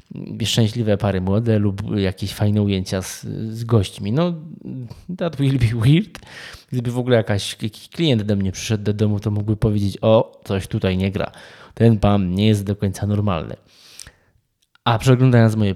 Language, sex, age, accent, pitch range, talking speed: Polish, male, 20-39, native, 100-120 Hz, 165 wpm